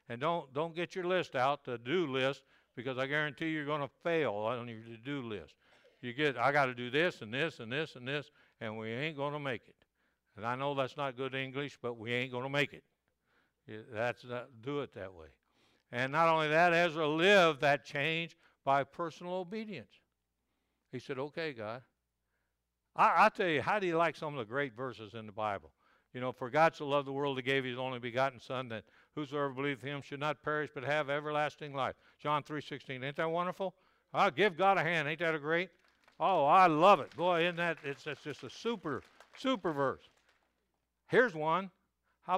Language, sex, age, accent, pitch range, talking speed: English, male, 60-79, American, 130-165 Hz, 210 wpm